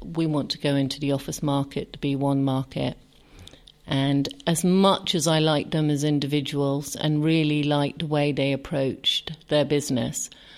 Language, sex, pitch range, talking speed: English, female, 145-175 Hz, 170 wpm